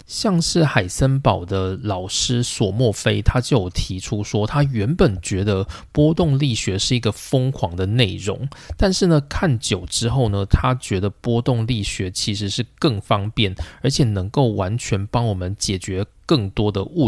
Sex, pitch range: male, 100-135 Hz